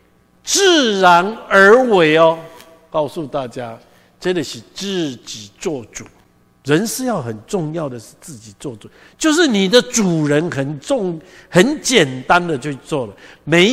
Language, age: Chinese, 60-79